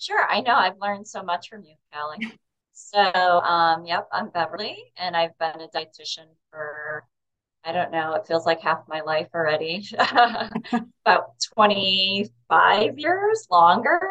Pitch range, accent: 160-185 Hz, American